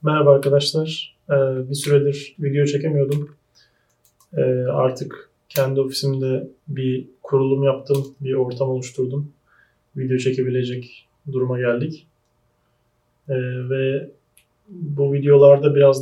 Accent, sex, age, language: native, male, 30-49, Turkish